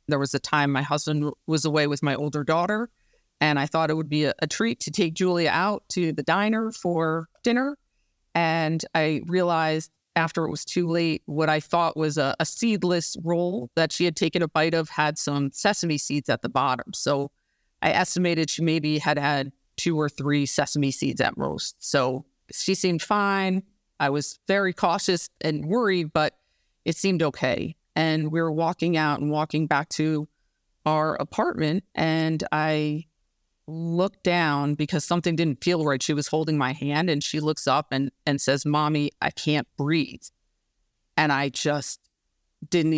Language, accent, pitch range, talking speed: English, American, 145-165 Hz, 180 wpm